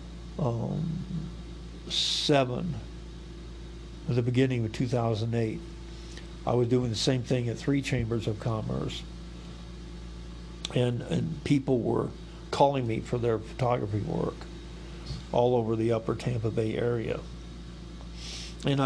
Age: 50-69